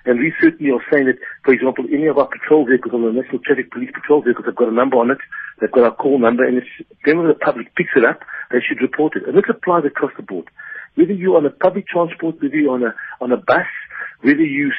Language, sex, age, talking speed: English, male, 60-79, 255 wpm